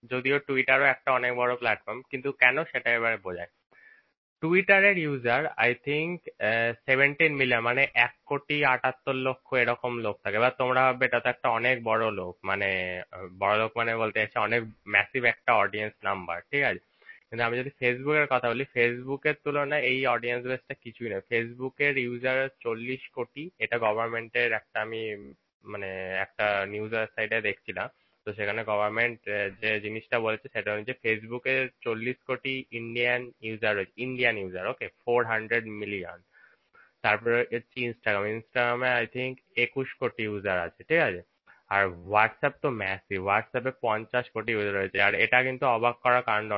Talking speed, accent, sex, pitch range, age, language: 80 wpm, native, male, 110-130 Hz, 20-39, Bengali